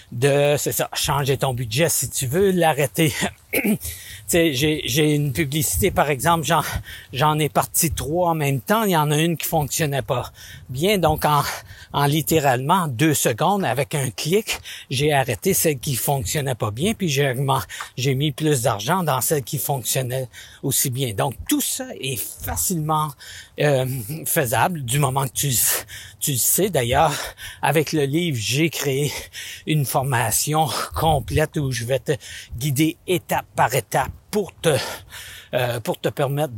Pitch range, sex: 130-160 Hz, male